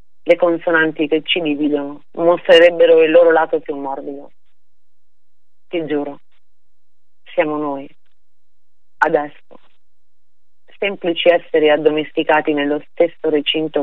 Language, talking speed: Italian, 95 wpm